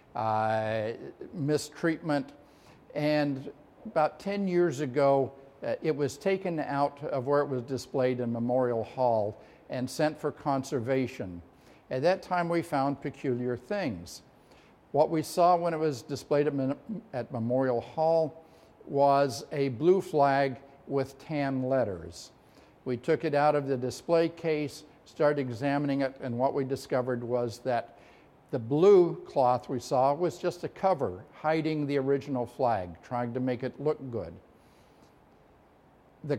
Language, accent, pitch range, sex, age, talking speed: English, American, 130-155 Hz, male, 50-69, 140 wpm